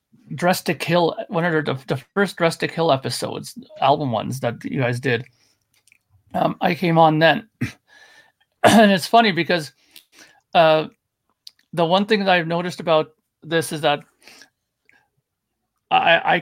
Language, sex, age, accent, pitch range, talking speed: English, male, 40-59, American, 145-175 Hz, 140 wpm